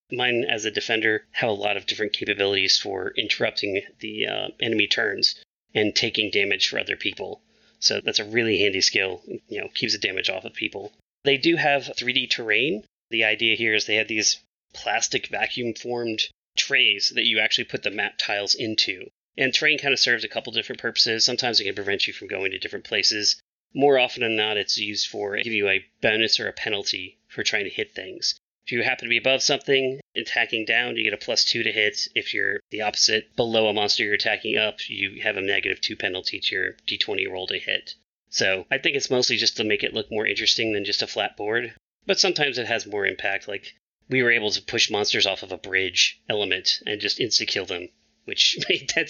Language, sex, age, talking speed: English, male, 30-49, 220 wpm